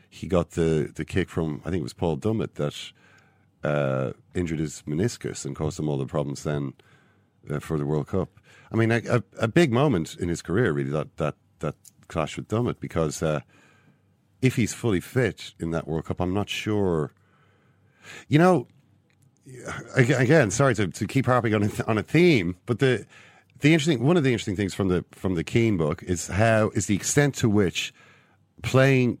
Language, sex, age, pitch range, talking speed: English, male, 50-69, 85-115 Hz, 195 wpm